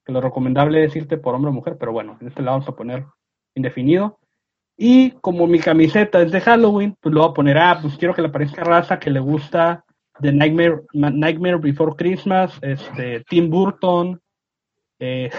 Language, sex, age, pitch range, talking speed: Spanish, male, 30-49, 145-185 Hz, 190 wpm